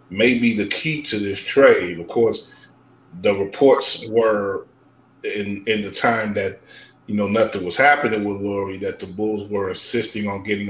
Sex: male